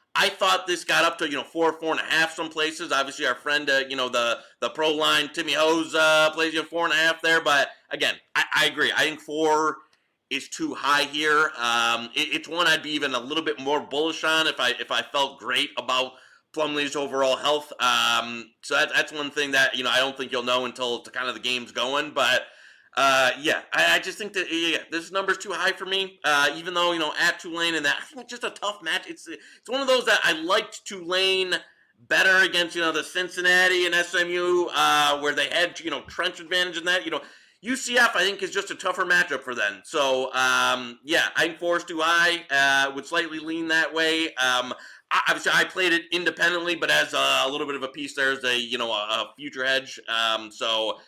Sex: male